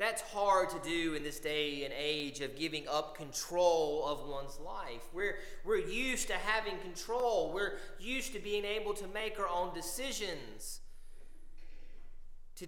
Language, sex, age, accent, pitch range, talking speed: English, male, 30-49, American, 145-205 Hz, 155 wpm